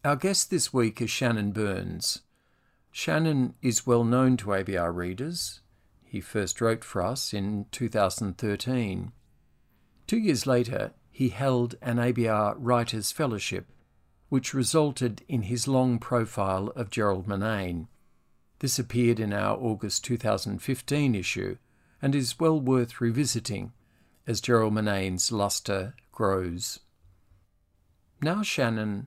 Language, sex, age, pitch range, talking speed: English, male, 50-69, 100-125 Hz, 120 wpm